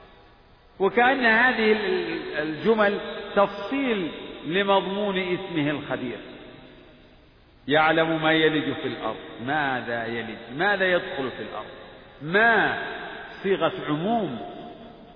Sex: male